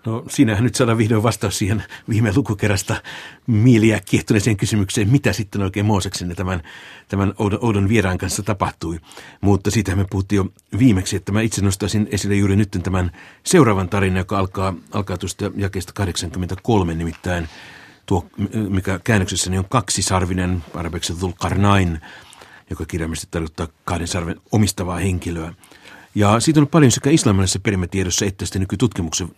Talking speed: 145 wpm